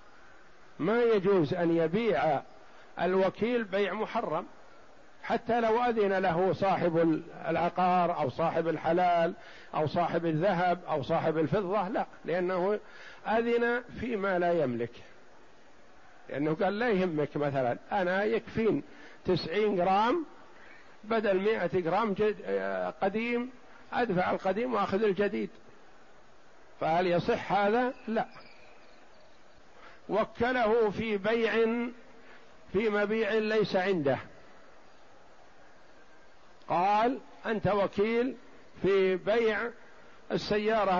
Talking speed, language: 90 wpm, Arabic